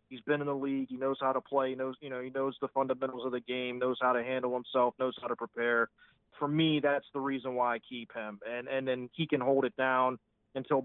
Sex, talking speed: male, 265 wpm